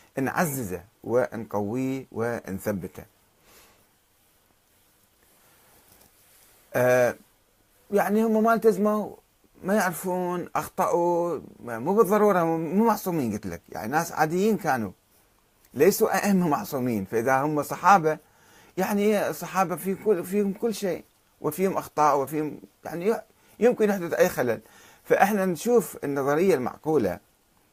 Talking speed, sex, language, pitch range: 95 wpm, male, Arabic, 110-180 Hz